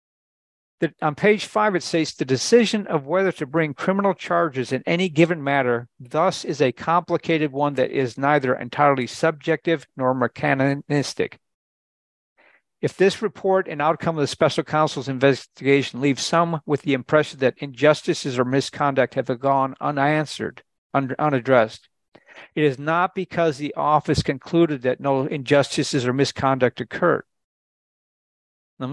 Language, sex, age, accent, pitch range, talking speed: English, male, 50-69, American, 130-160 Hz, 140 wpm